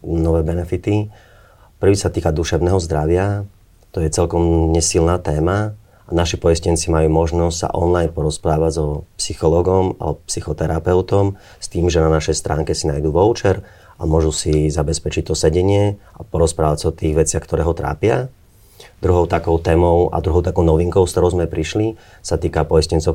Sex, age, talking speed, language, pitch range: male, 30-49, 160 wpm, Slovak, 80-95 Hz